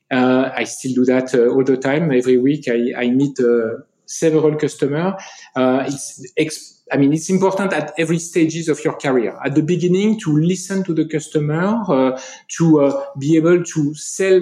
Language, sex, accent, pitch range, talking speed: English, male, French, 135-175 Hz, 180 wpm